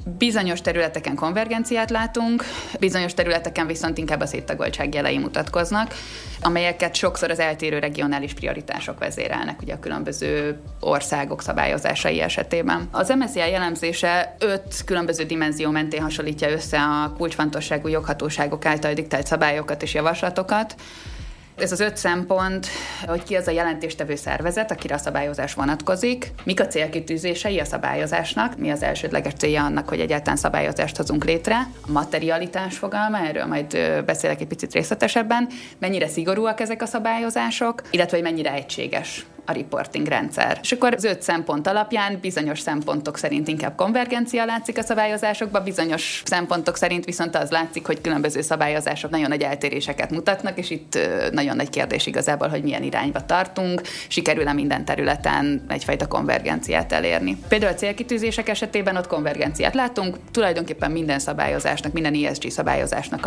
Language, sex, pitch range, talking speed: Hungarian, female, 150-200 Hz, 140 wpm